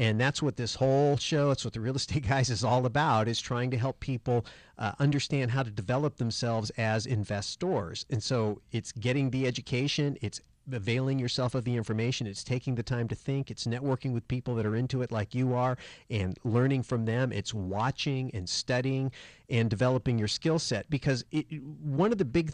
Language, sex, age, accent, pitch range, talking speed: English, male, 40-59, American, 110-135 Hz, 200 wpm